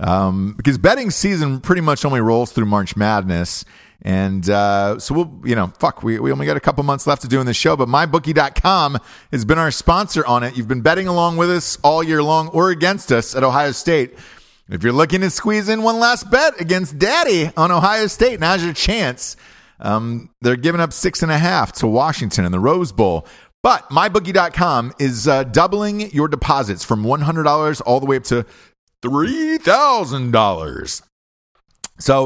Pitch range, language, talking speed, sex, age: 115-165 Hz, English, 190 wpm, male, 30-49